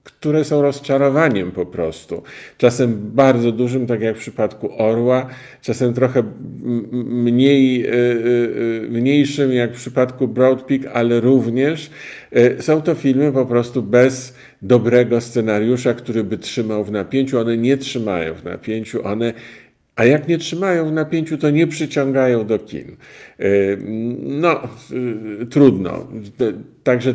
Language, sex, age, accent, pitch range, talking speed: Polish, male, 50-69, native, 110-135 Hz, 125 wpm